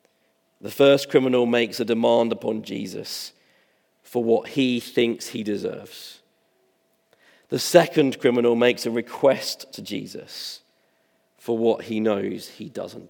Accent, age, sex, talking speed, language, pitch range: British, 40-59, male, 130 wpm, English, 120-145 Hz